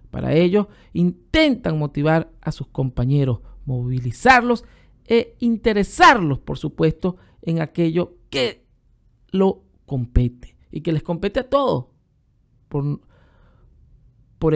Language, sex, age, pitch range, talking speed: Spanish, male, 50-69, 145-215 Hz, 105 wpm